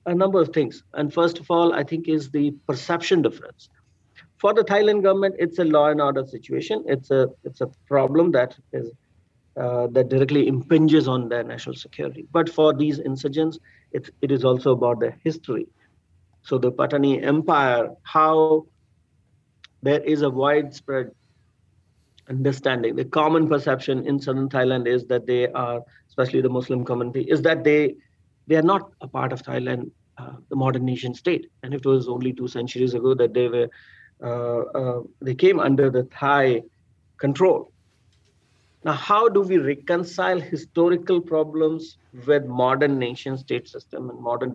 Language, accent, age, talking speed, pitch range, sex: English, Indian, 50-69, 160 wpm, 125-155 Hz, male